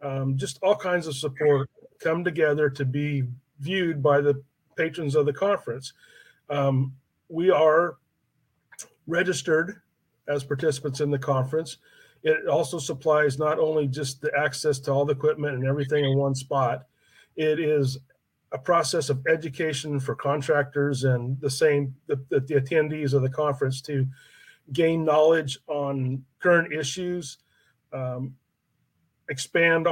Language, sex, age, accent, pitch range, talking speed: English, male, 40-59, American, 135-160 Hz, 140 wpm